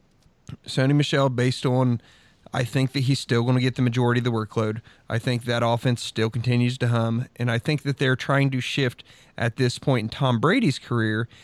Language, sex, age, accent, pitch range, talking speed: English, male, 30-49, American, 120-140 Hz, 210 wpm